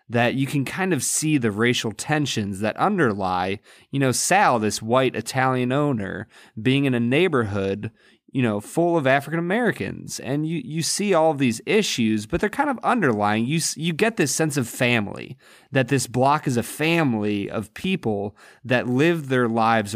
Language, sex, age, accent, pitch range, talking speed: English, male, 30-49, American, 105-140 Hz, 175 wpm